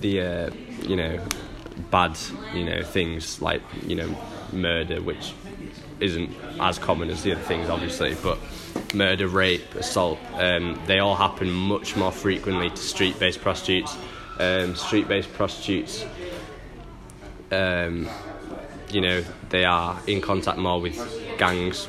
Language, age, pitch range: English, 10-29, 85-100 Hz